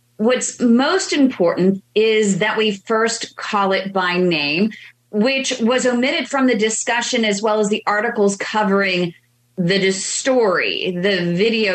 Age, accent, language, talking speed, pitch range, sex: 30-49, American, English, 140 wpm, 185-245 Hz, female